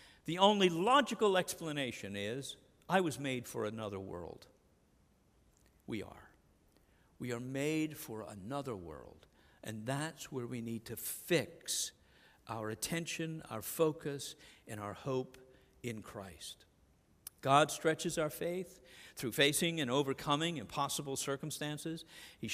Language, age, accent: English, 50-69, American